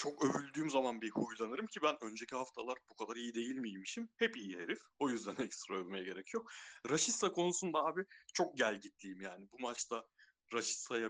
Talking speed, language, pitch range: 180 wpm, Turkish, 110-135 Hz